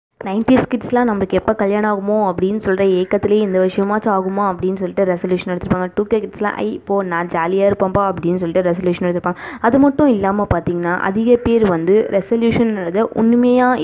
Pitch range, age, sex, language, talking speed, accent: 185-225 Hz, 20-39, female, Tamil, 175 wpm, native